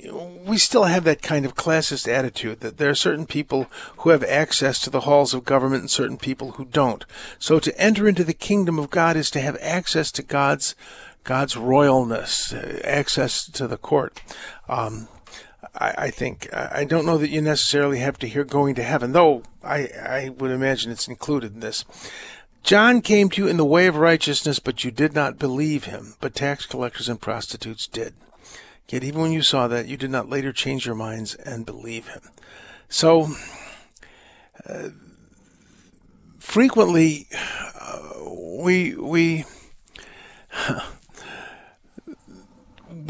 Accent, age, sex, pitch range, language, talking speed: American, 50-69, male, 130-185 Hz, English, 160 wpm